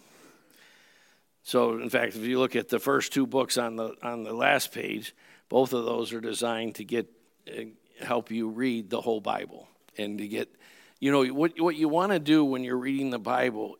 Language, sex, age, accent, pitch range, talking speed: English, male, 60-79, American, 120-145 Hz, 205 wpm